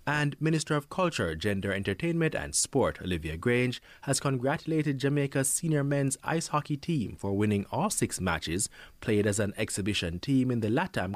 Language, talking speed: English, 165 wpm